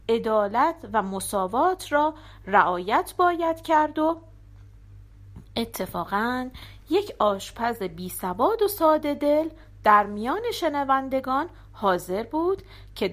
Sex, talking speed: female, 100 wpm